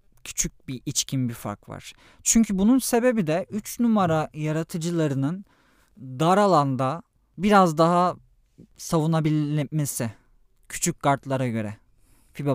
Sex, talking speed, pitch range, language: male, 105 wpm, 125-170 Hz, Turkish